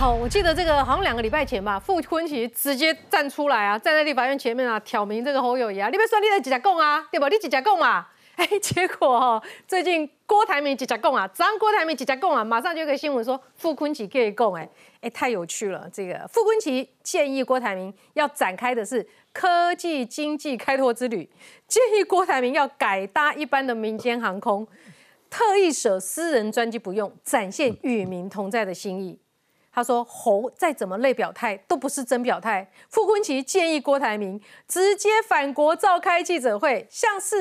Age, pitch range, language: 30-49, 240-340 Hz, Chinese